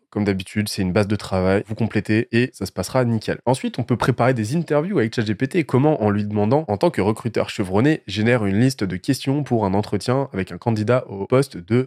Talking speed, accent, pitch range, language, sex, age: 230 wpm, French, 105-125 Hz, French, male, 20-39